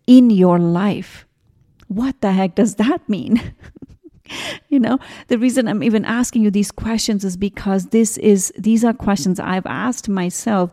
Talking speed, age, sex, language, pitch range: 160 wpm, 40-59, female, English, 180-225 Hz